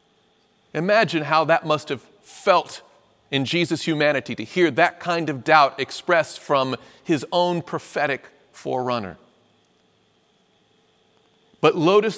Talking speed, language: 115 wpm, English